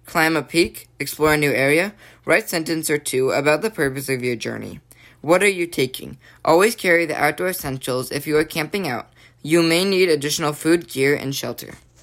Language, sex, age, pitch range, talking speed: English, female, 10-29, 135-175 Hz, 195 wpm